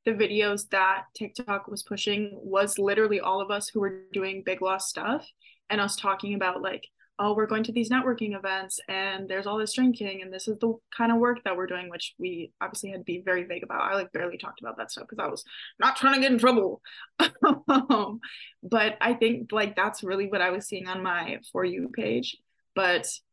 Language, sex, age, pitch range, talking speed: English, female, 20-39, 185-225 Hz, 220 wpm